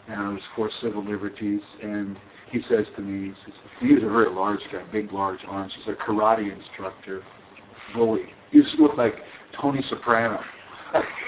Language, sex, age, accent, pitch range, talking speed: English, male, 50-69, American, 100-115 Hz, 175 wpm